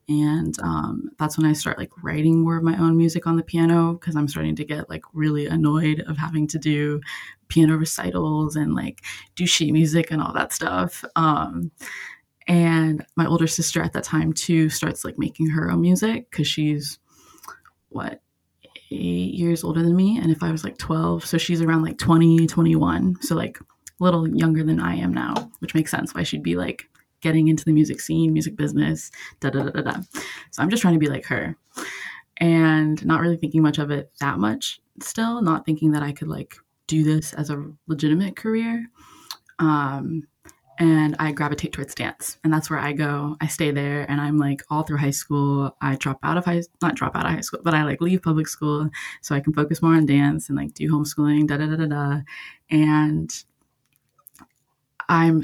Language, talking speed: English, 195 wpm